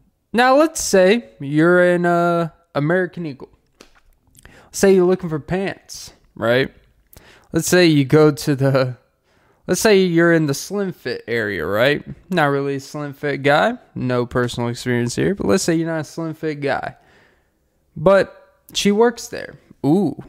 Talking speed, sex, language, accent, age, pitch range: 155 wpm, male, English, American, 20-39, 135-180 Hz